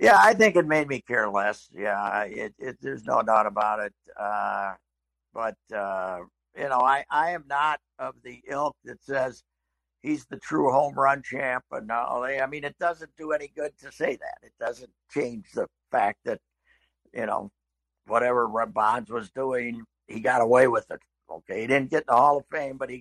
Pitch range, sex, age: 95-140 Hz, male, 60-79